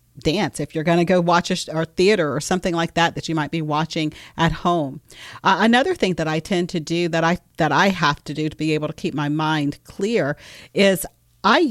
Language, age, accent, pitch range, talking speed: English, 40-59, American, 155-195 Hz, 245 wpm